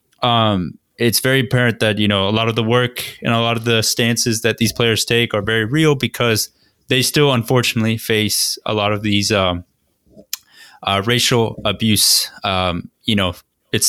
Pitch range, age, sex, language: 100-120 Hz, 20-39, male, English